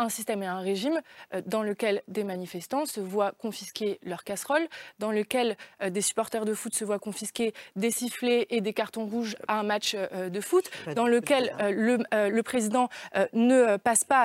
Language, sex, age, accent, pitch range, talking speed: French, female, 20-39, French, 210-255 Hz, 175 wpm